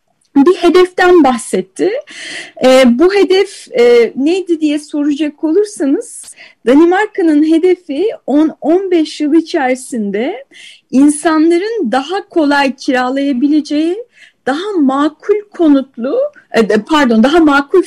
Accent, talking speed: native, 80 wpm